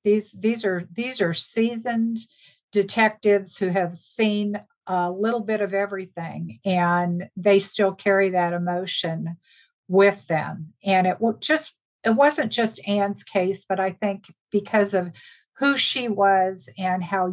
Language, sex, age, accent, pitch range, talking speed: English, female, 50-69, American, 185-215 Hz, 140 wpm